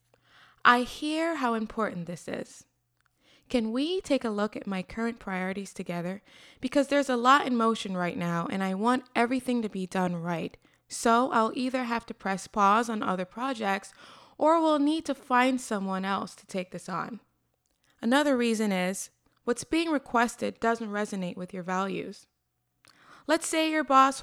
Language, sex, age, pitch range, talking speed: English, female, 20-39, 190-260 Hz, 170 wpm